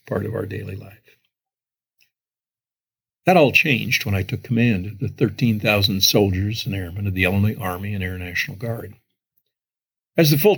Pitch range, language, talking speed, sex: 100-135 Hz, English, 165 wpm, male